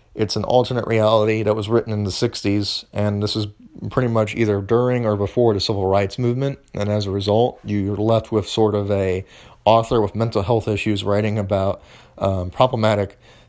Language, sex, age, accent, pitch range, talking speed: English, male, 30-49, American, 100-115 Hz, 185 wpm